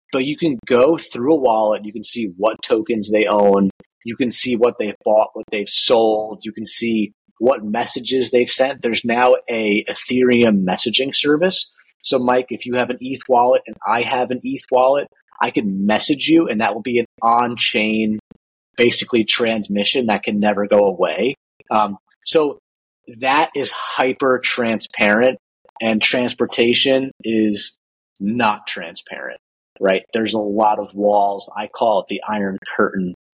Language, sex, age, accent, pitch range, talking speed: English, male, 30-49, American, 105-125 Hz, 160 wpm